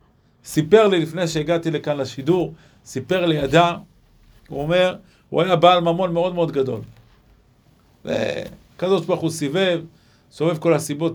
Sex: male